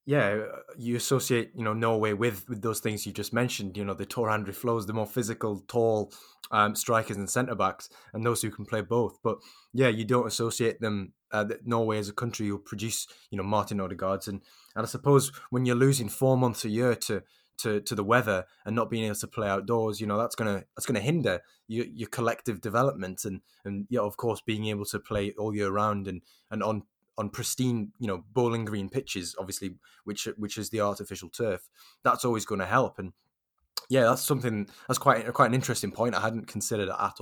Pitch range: 105-120 Hz